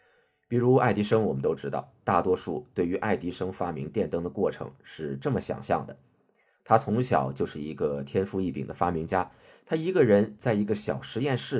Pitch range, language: 90-135 Hz, Chinese